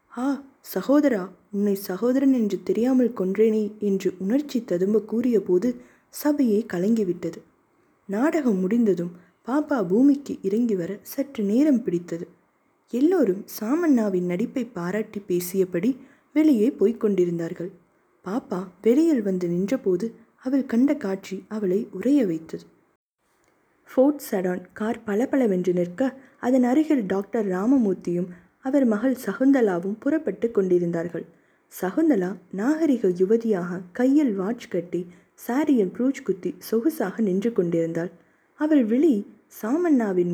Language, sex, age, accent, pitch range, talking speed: Tamil, female, 20-39, native, 185-260 Hz, 100 wpm